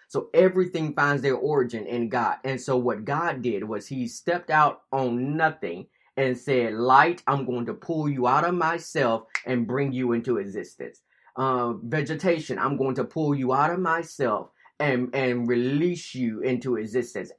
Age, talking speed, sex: 20-39, 175 wpm, male